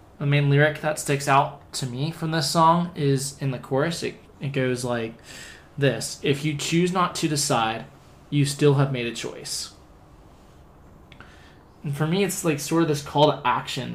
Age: 20-39